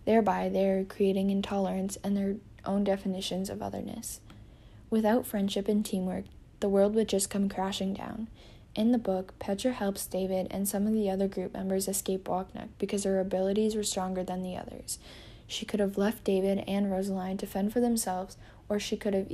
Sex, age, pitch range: female, 10-29, 190-205 Hz